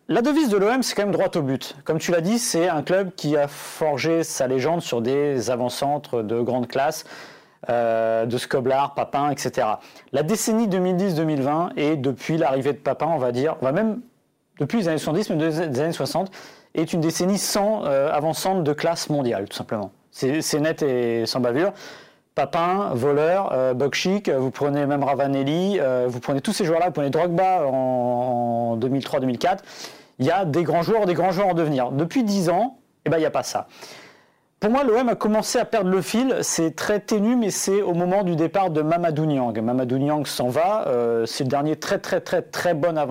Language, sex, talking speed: French, male, 205 wpm